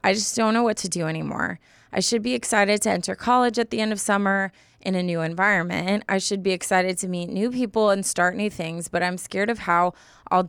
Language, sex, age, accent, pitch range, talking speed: English, female, 20-39, American, 175-205 Hz, 240 wpm